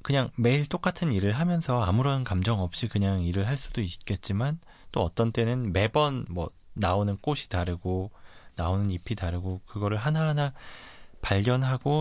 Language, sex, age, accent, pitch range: Korean, male, 20-39, native, 90-125 Hz